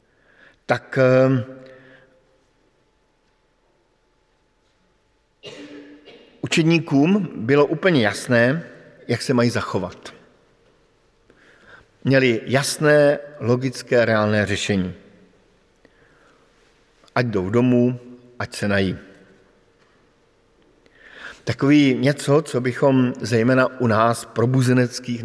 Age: 50-69